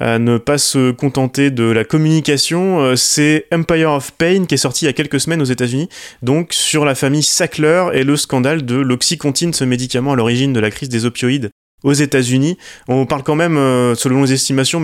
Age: 30-49